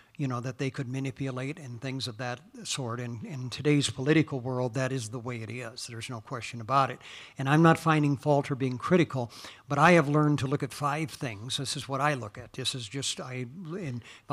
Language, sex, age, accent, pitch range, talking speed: English, male, 60-79, American, 125-145 Hz, 230 wpm